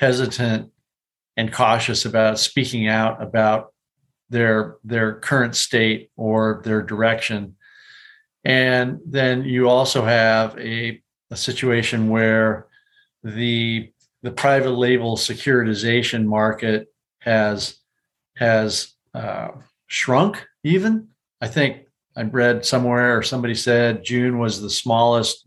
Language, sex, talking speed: English, male, 110 wpm